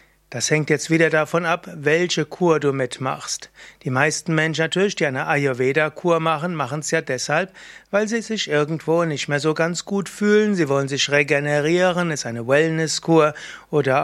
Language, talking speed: German, 170 wpm